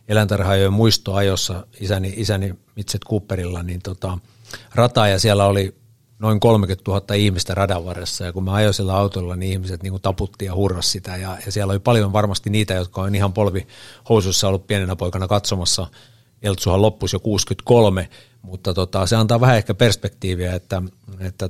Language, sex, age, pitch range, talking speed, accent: Finnish, male, 60-79, 95-110 Hz, 170 wpm, native